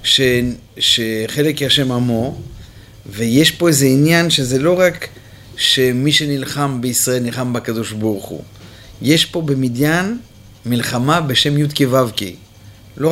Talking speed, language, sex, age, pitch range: 115 wpm, Hebrew, male, 30-49, 115-155 Hz